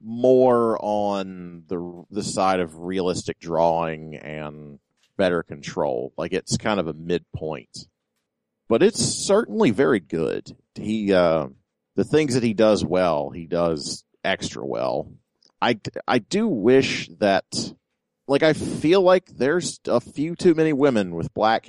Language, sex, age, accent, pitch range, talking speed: English, male, 40-59, American, 90-120 Hz, 140 wpm